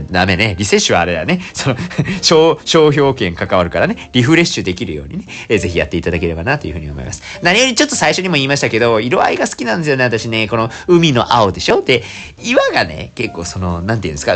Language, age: Japanese, 40-59